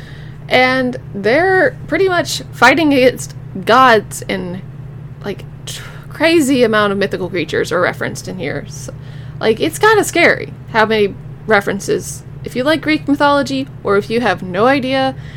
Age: 20-39